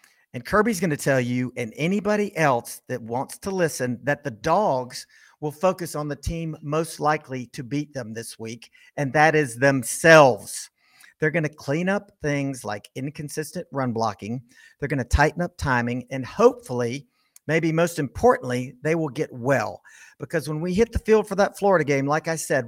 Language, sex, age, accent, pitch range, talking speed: English, male, 50-69, American, 145-190 Hz, 185 wpm